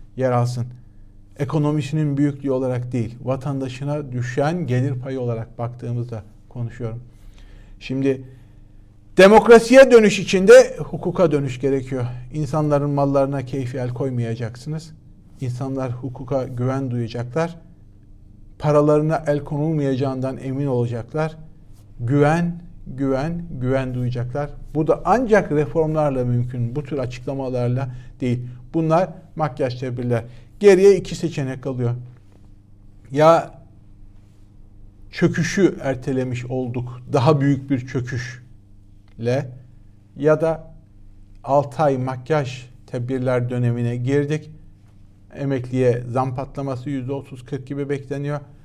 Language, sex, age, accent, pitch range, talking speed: Turkish, male, 50-69, native, 120-150 Hz, 95 wpm